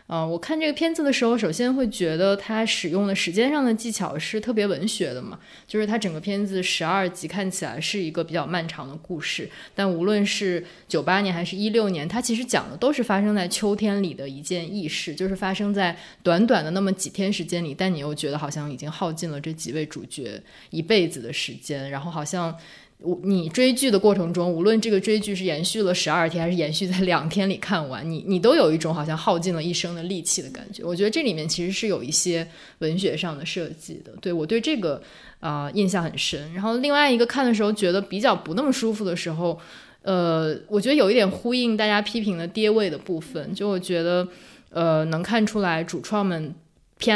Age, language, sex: 20-39, English, female